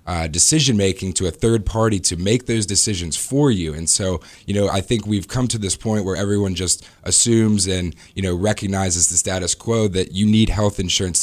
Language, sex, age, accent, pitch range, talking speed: English, male, 20-39, American, 85-105 Hz, 215 wpm